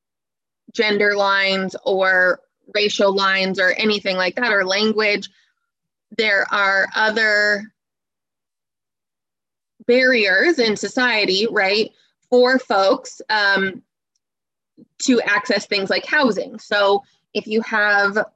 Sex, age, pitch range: female, 20-39, 200-235 Hz